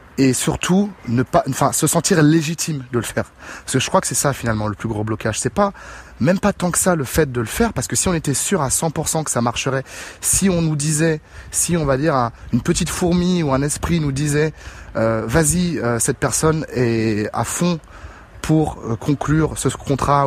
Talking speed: 220 wpm